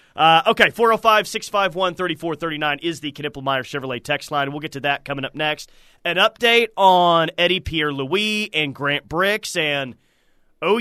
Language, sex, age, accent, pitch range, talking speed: English, male, 30-49, American, 150-210 Hz, 145 wpm